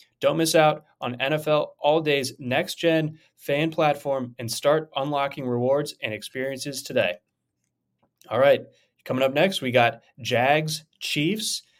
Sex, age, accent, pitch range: male, 20-39, American, 115-140 Hz